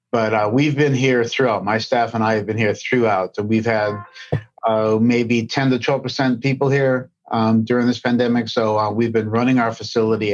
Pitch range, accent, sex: 110-135 Hz, American, male